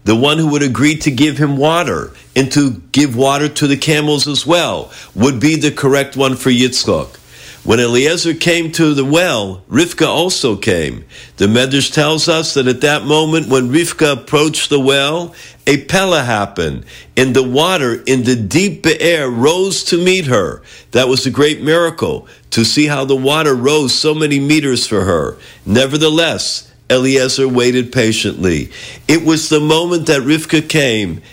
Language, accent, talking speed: English, American, 170 wpm